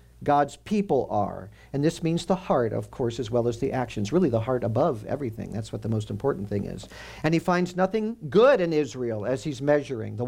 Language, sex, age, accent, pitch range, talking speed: English, male, 50-69, American, 110-155 Hz, 220 wpm